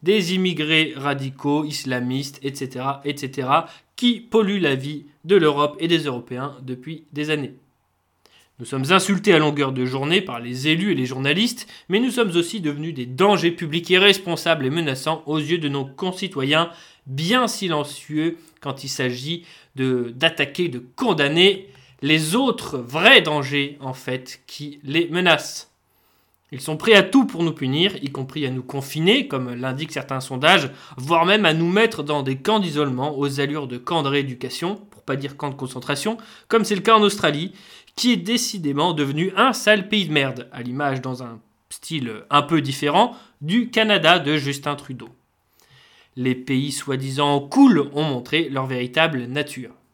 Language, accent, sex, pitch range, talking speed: French, French, male, 135-175 Hz, 165 wpm